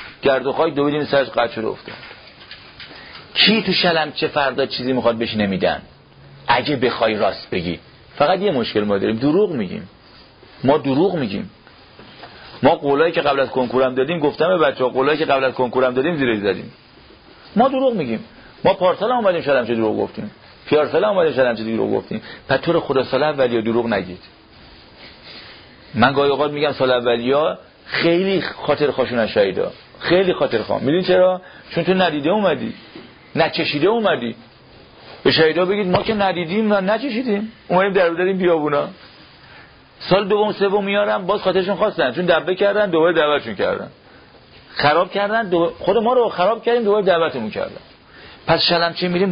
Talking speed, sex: 155 wpm, male